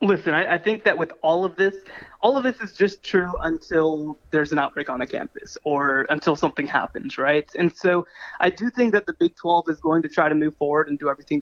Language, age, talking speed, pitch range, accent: English, 20-39, 240 wpm, 155-195 Hz, American